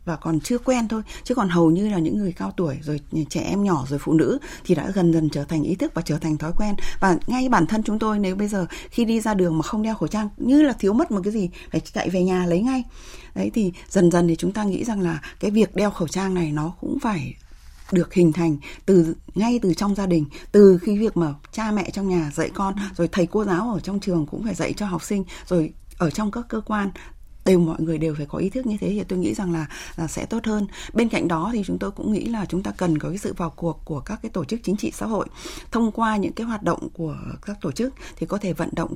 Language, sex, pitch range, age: Vietnamese, female, 165-215 Hz, 20-39